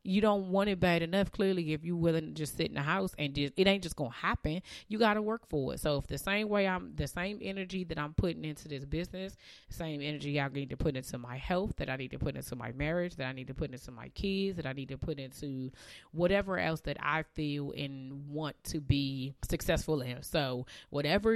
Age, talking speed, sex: 30-49, 240 wpm, female